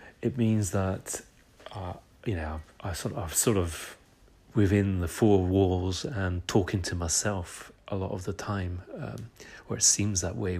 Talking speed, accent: 175 wpm, British